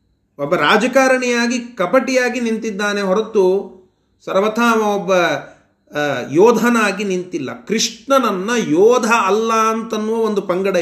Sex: male